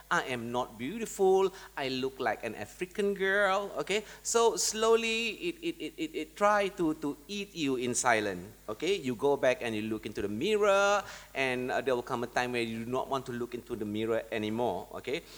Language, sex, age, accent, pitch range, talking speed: English, male, 30-49, Malaysian, 115-175 Hz, 210 wpm